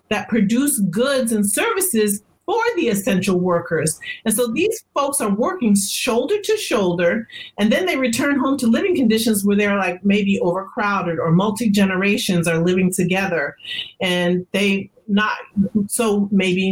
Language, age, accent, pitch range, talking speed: English, 40-59, American, 180-240 Hz, 145 wpm